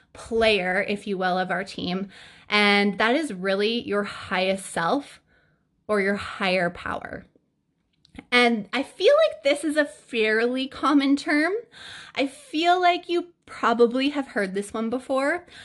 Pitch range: 190-245 Hz